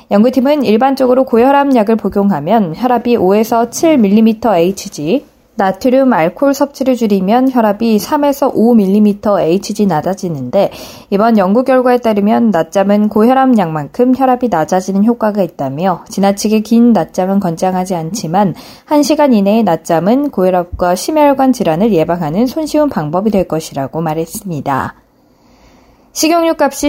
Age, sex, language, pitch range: 20-39, female, Korean, 190-260 Hz